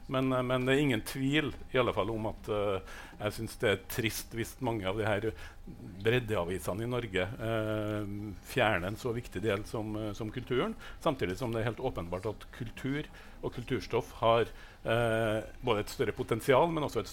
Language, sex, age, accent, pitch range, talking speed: English, male, 60-79, Norwegian, 105-125 Hz, 200 wpm